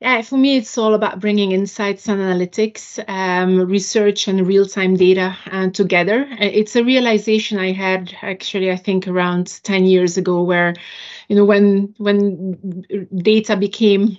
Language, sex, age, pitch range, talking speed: English, female, 30-49, 185-210 Hz, 150 wpm